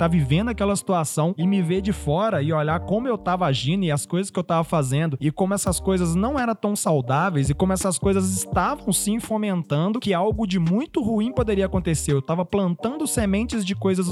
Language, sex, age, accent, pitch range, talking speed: Portuguese, male, 20-39, Brazilian, 170-220 Hz, 210 wpm